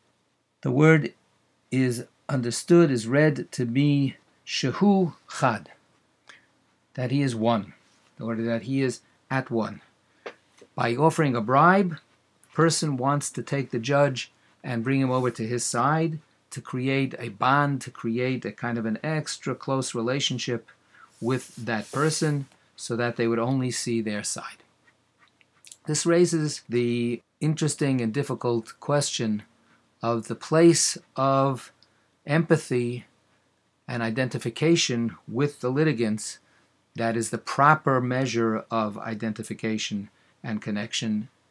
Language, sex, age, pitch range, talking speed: English, male, 50-69, 115-140 Hz, 130 wpm